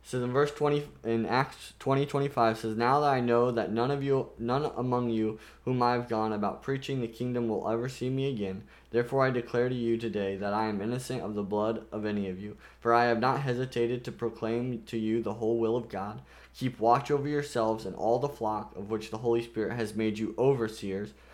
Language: English